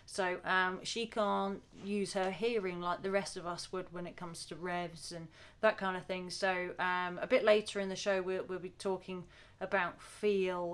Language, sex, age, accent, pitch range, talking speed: English, female, 30-49, British, 180-205 Hz, 205 wpm